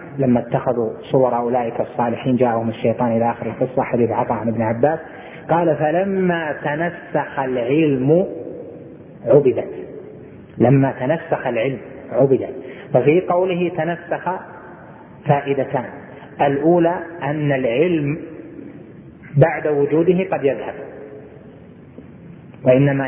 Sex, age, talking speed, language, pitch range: male, 30-49, 90 wpm, Arabic, 130-160 Hz